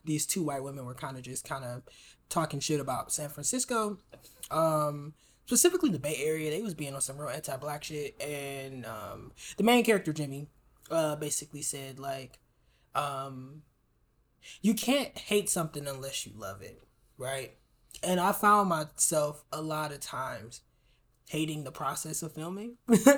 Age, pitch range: 20-39, 135-180 Hz